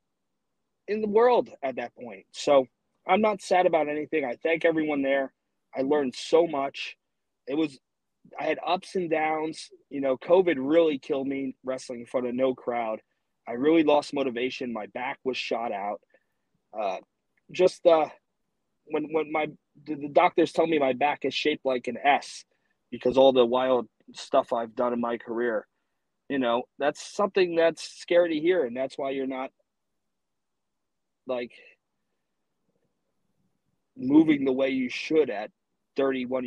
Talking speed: 160 wpm